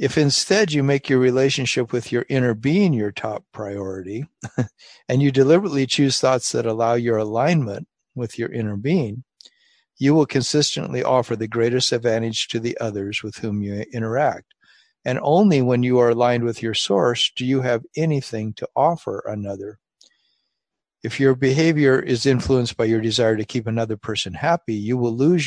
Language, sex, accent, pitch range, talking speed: English, male, American, 115-140 Hz, 170 wpm